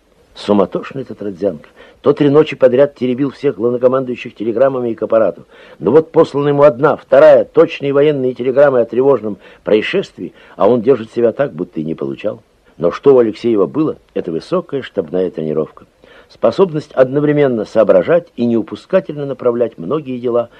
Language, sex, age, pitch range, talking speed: Russian, male, 60-79, 105-140 Hz, 150 wpm